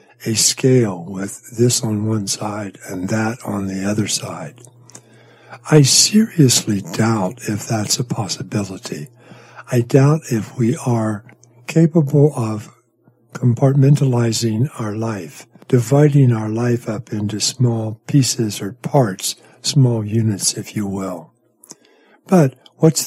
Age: 60-79